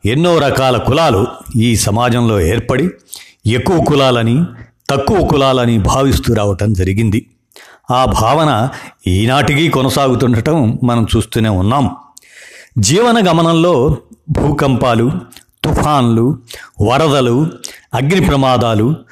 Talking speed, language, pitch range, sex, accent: 85 wpm, Telugu, 115-150 Hz, male, native